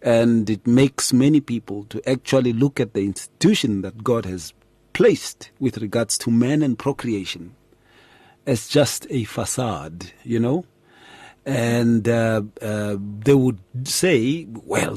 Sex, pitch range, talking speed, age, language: male, 110-135 Hz, 135 wpm, 40-59, English